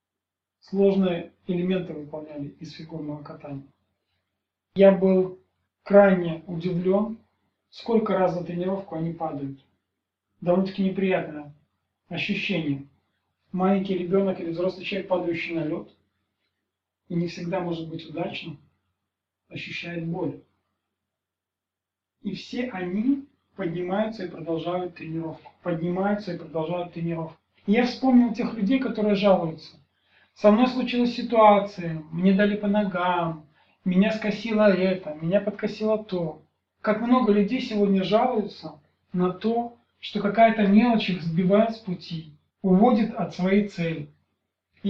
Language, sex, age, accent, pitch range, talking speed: Russian, male, 40-59, native, 160-205 Hz, 110 wpm